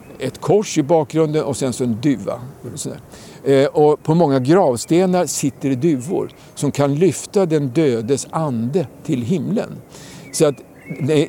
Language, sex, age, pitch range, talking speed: Swedish, male, 60-79, 130-165 Hz, 145 wpm